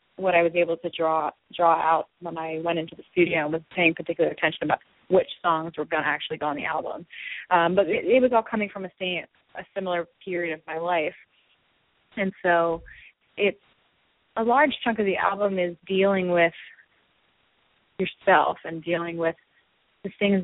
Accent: American